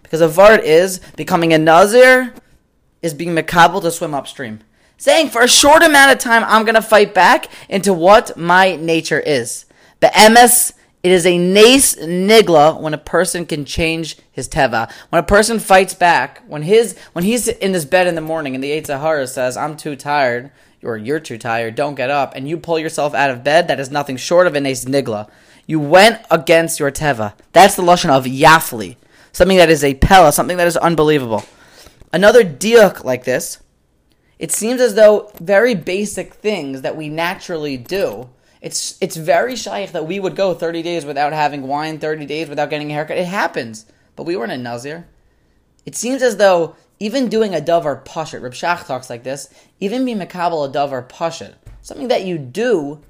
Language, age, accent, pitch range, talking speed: English, 20-39, American, 145-200 Hz, 200 wpm